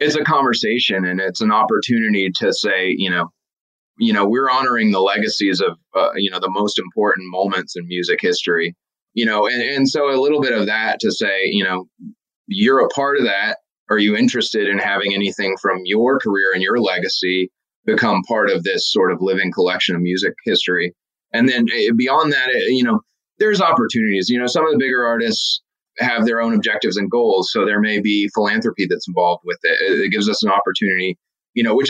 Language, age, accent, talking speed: English, 30-49, American, 205 wpm